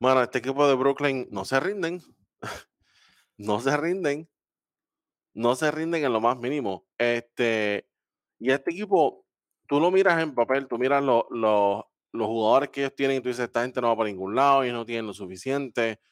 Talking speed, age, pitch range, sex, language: 180 wpm, 20-39, 110-140 Hz, male, Spanish